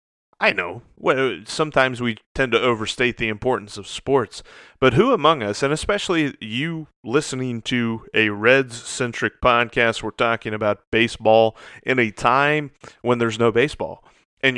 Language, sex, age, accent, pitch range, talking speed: English, male, 30-49, American, 110-145 Hz, 145 wpm